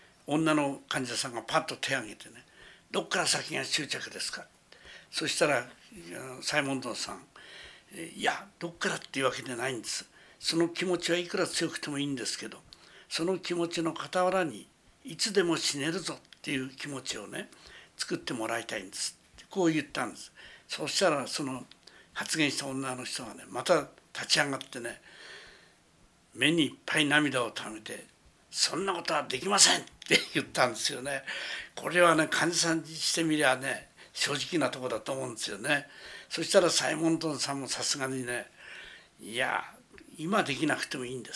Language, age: Japanese, 60-79